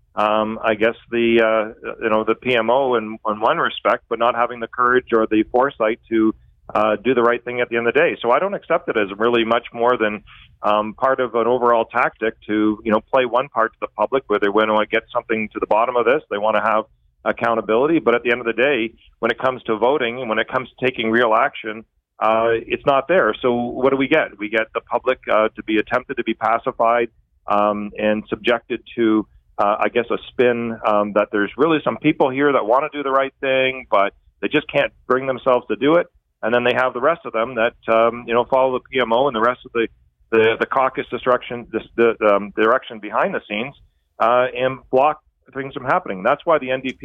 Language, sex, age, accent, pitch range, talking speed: English, male, 40-59, American, 110-125 Hz, 240 wpm